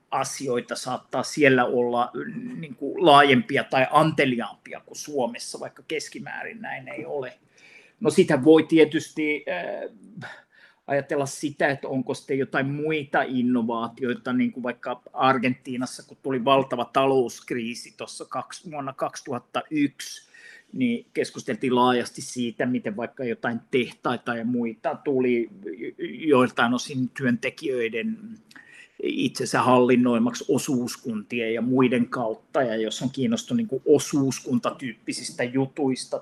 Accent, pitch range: native, 125-175 Hz